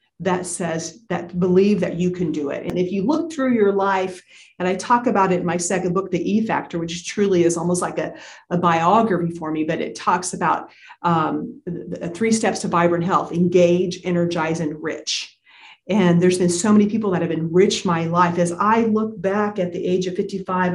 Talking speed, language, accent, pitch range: 210 wpm, English, American, 175-205 Hz